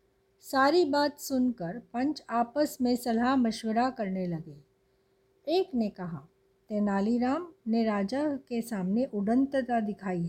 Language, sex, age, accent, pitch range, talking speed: Hindi, female, 50-69, native, 200-285 Hz, 115 wpm